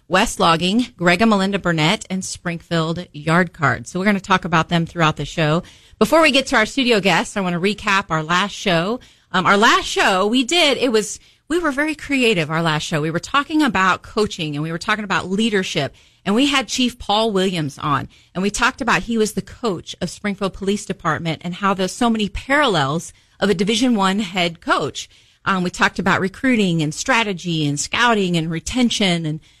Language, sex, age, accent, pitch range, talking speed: English, female, 40-59, American, 165-230 Hz, 210 wpm